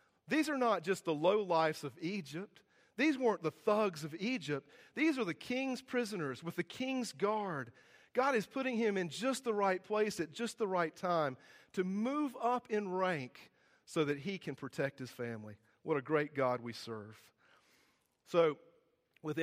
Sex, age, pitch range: male, 40-59, 145-200 Hz